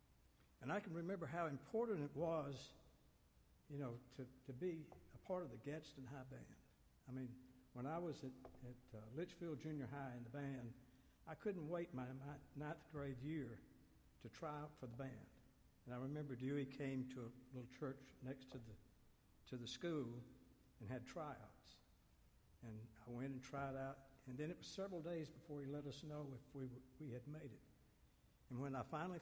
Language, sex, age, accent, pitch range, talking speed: English, male, 60-79, American, 125-150 Hz, 195 wpm